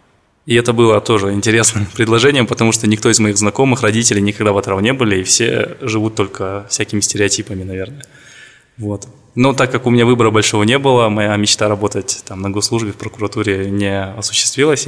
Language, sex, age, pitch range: Russian, male, 20-39, 105-120 Hz